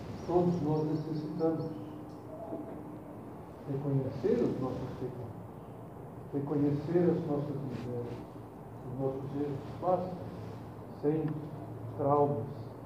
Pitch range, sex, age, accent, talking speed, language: 140-170 Hz, male, 50-69, Brazilian, 80 wpm, Portuguese